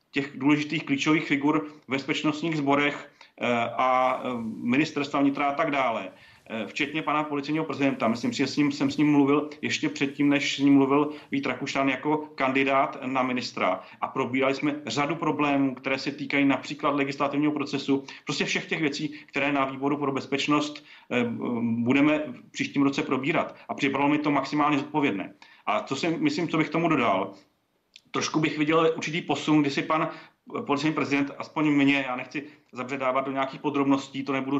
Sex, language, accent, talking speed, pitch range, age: male, Czech, native, 160 wpm, 135-150 Hz, 40-59